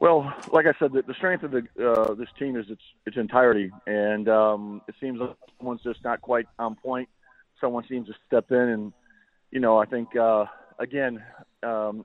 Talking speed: 190 wpm